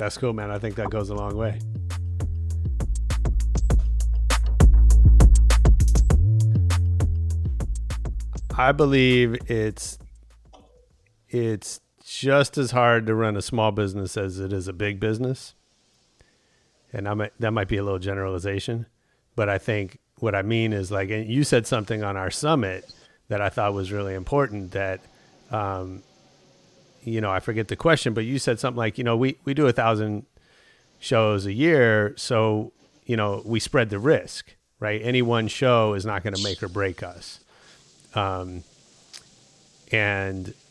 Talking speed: 150 wpm